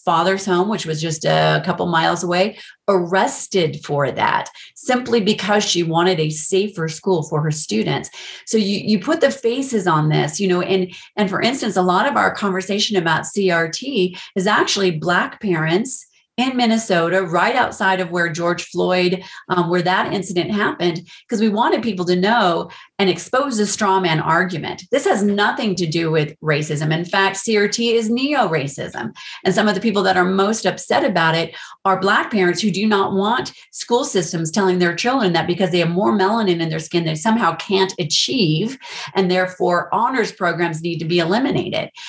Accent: American